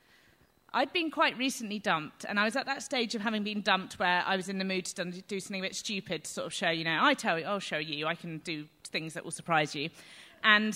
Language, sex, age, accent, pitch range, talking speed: English, female, 30-49, British, 170-245 Hz, 270 wpm